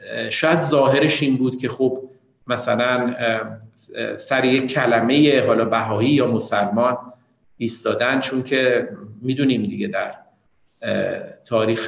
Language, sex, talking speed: Persian, male, 105 wpm